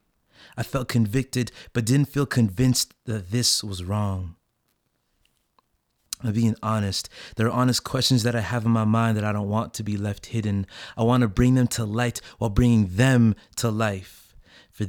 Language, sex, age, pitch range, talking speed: English, male, 20-39, 100-120 Hz, 180 wpm